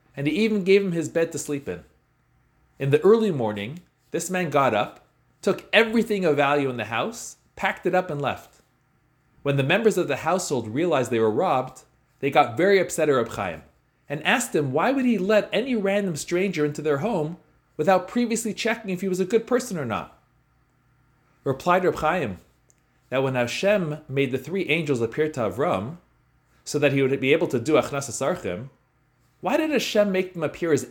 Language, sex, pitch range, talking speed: English, male, 135-195 Hz, 190 wpm